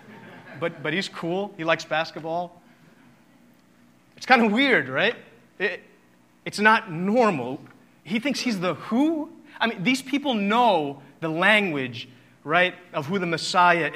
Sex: male